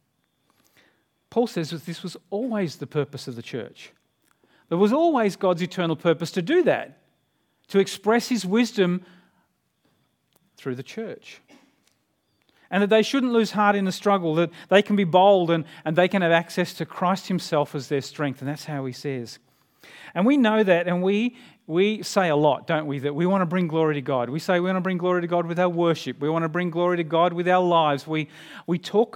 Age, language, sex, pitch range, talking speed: 40-59, English, male, 155-190 Hz, 210 wpm